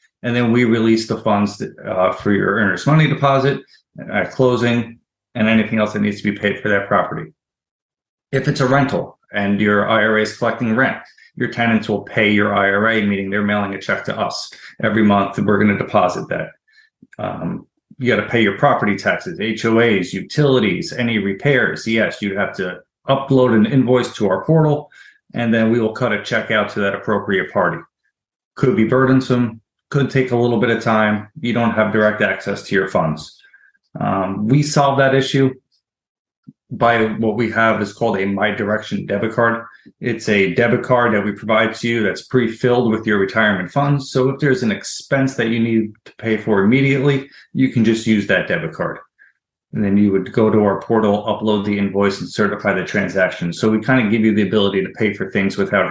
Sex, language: male, English